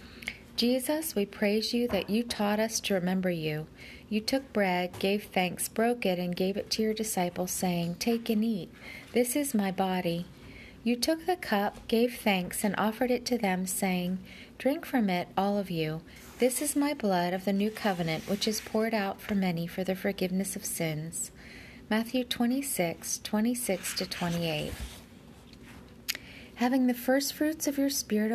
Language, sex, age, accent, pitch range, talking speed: English, female, 30-49, American, 185-235 Hz, 175 wpm